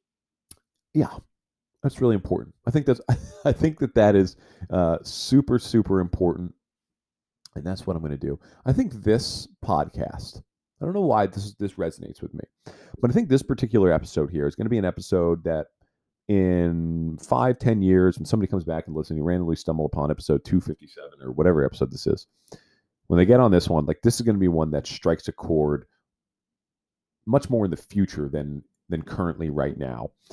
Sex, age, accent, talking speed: male, 40-59, American, 195 wpm